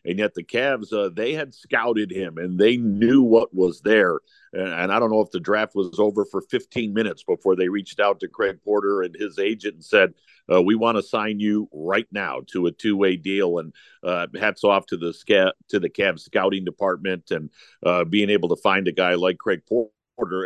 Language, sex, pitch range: English, male, 95-115 Hz